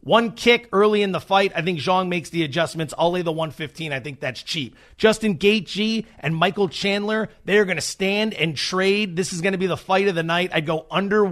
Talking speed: 235 wpm